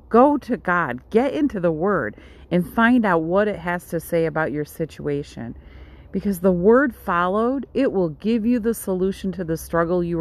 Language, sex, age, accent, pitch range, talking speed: English, female, 40-59, American, 155-220 Hz, 190 wpm